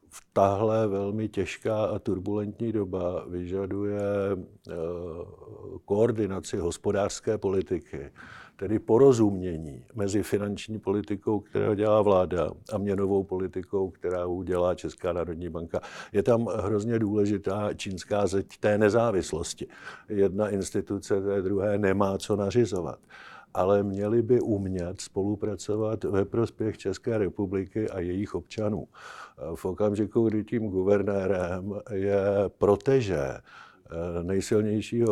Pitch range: 95-105 Hz